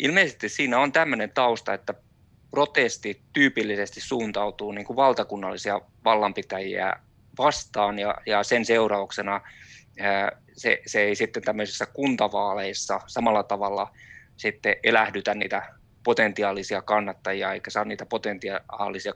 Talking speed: 95 wpm